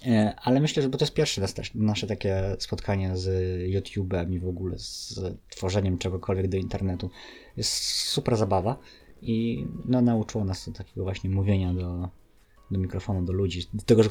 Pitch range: 95-115 Hz